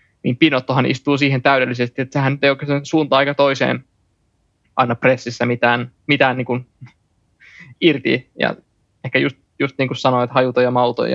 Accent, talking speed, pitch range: native, 160 wpm, 125-135 Hz